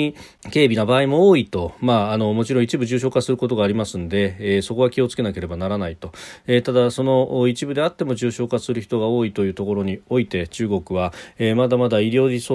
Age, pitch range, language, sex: 40-59, 95-125 Hz, Japanese, male